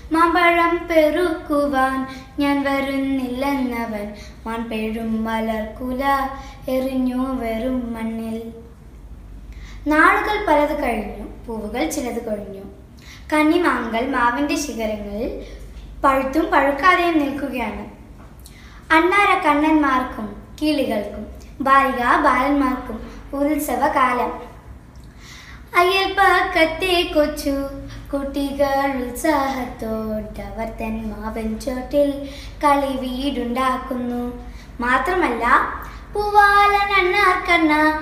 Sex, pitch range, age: female, 245-310 Hz, 20-39